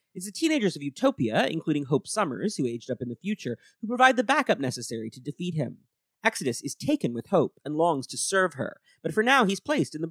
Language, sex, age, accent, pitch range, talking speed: English, male, 30-49, American, 130-210 Hz, 230 wpm